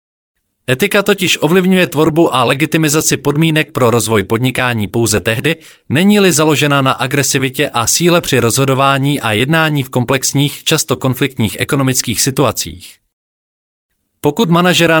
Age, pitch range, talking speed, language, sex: 40-59, 115-155 Hz, 120 wpm, Czech, male